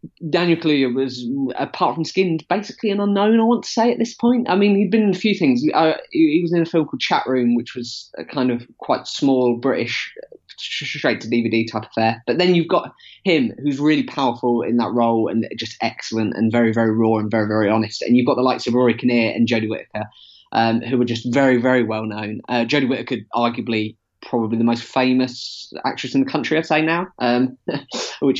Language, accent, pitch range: English, British, 115-150 Hz